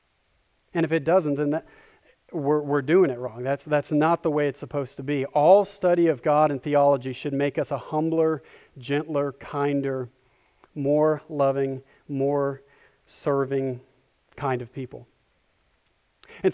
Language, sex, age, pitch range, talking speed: English, male, 40-59, 130-160 Hz, 150 wpm